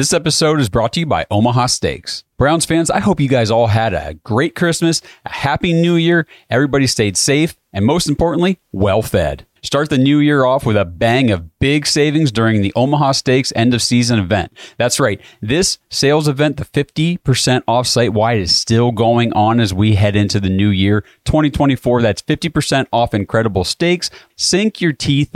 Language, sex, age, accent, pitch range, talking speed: English, male, 30-49, American, 105-145 Hz, 190 wpm